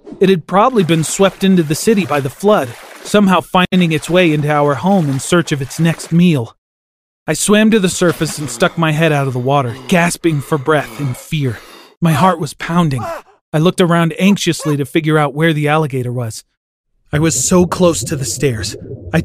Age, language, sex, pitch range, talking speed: 30-49, English, male, 140-180 Hz, 205 wpm